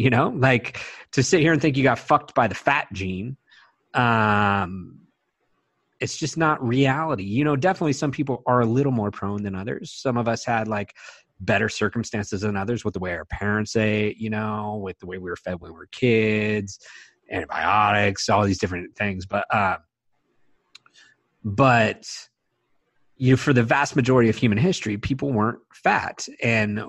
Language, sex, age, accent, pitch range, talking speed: English, male, 30-49, American, 100-125 Hz, 180 wpm